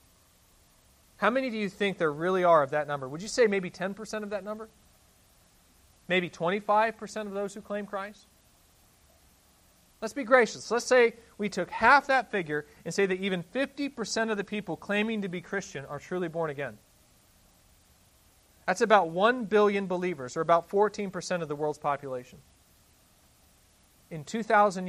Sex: male